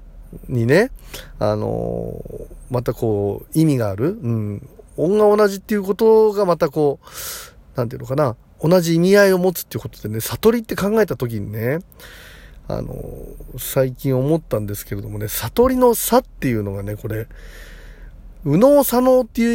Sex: male